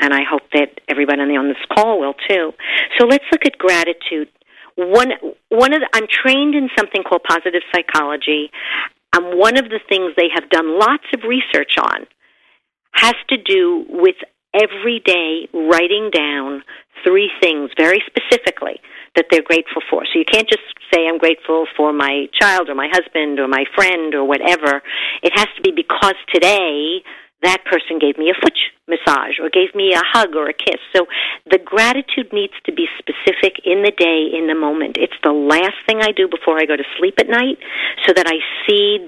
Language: English